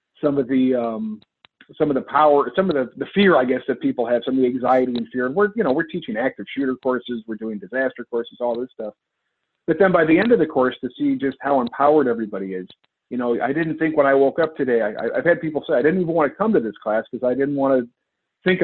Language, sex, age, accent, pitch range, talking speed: English, male, 50-69, American, 120-145 Hz, 275 wpm